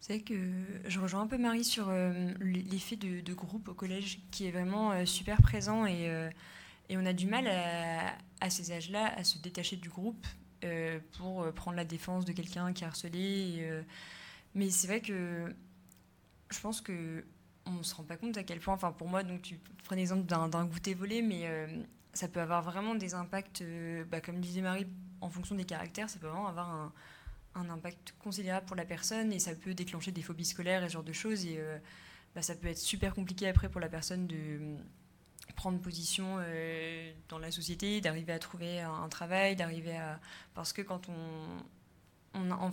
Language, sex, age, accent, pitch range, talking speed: French, female, 20-39, French, 165-190 Hz, 200 wpm